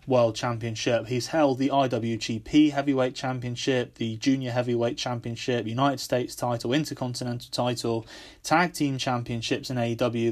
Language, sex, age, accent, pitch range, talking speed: English, male, 20-39, British, 120-140 Hz, 130 wpm